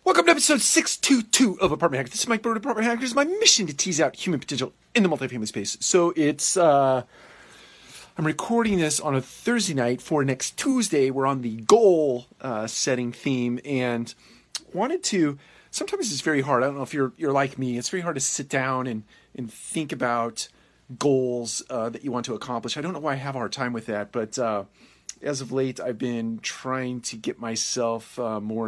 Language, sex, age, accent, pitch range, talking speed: English, male, 40-59, American, 115-150 Hz, 210 wpm